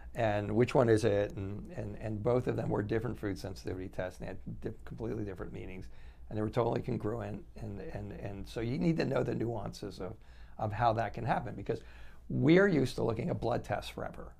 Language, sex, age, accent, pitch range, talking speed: English, male, 60-79, American, 100-125 Hz, 220 wpm